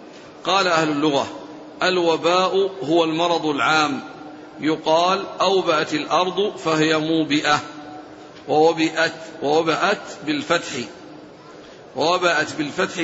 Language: Arabic